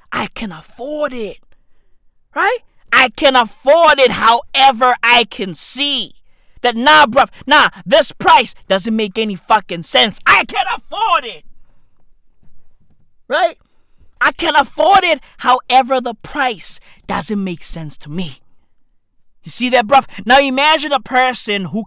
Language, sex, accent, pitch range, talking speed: English, male, American, 210-280 Hz, 135 wpm